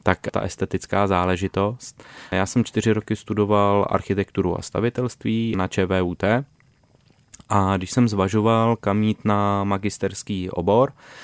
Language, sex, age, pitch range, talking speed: Czech, male, 20-39, 95-105 Hz, 125 wpm